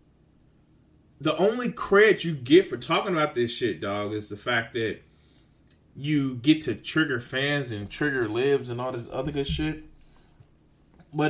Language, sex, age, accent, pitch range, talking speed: English, male, 30-49, American, 110-155 Hz, 160 wpm